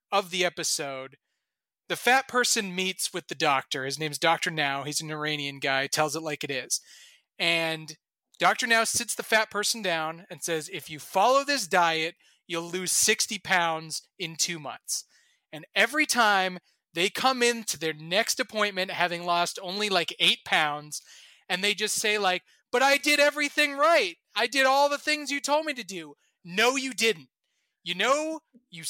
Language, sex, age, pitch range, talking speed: English, male, 30-49, 170-245 Hz, 180 wpm